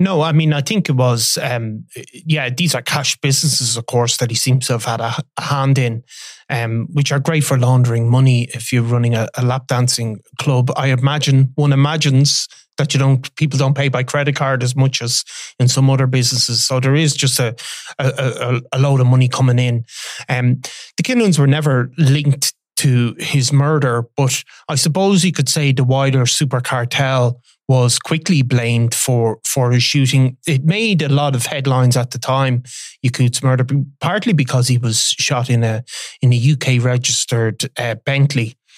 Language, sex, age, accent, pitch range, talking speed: English, male, 30-49, Irish, 125-140 Hz, 190 wpm